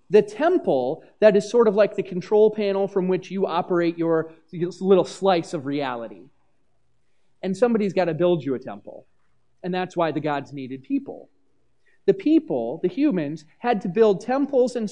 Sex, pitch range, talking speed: male, 185-280 Hz, 175 wpm